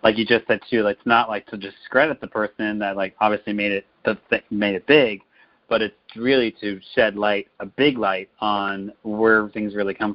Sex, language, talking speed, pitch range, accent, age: male, English, 205 wpm, 100-110 Hz, American, 30-49